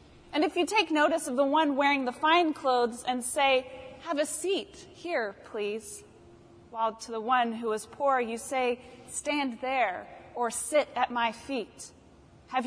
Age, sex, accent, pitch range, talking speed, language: 30-49, female, American, 230-280 Hz, 170 wpm, English